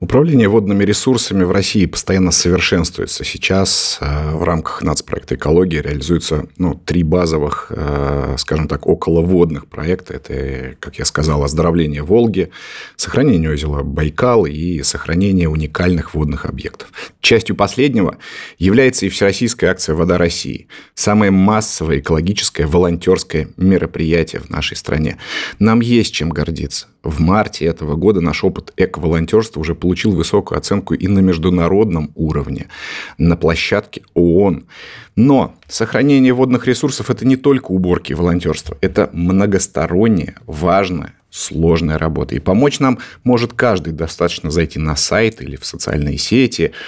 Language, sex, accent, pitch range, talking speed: Russian, male, native, 80-95 Hz, 130 wpm